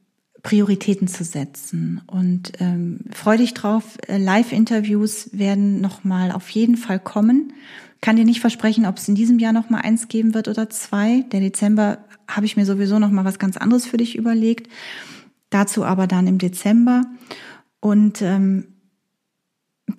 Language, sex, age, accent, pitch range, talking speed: German, female, 40-59, German, 195-235 Hz, 155 wpm